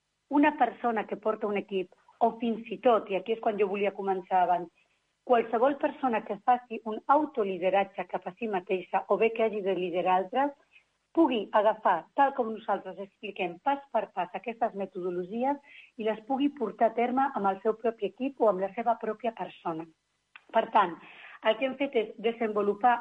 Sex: female